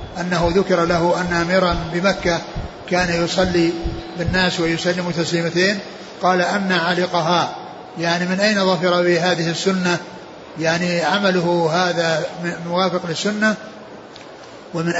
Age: 60-79